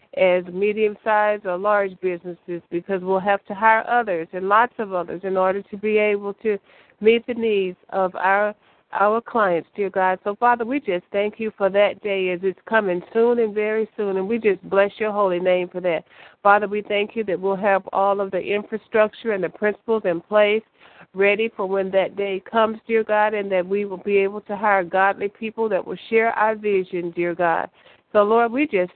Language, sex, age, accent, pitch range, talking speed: English, female, 50-69, American, 185-215 Hz, 205 wpm